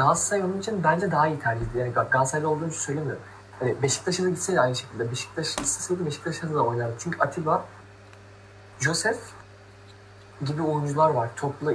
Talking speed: 145 wpm